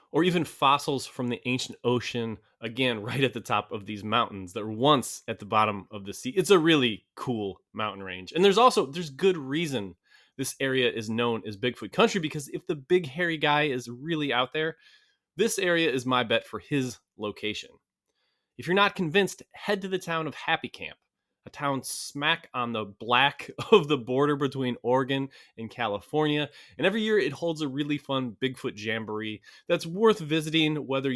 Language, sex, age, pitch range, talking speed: English, male, 20-39, 115-155 Hz, 190 wpm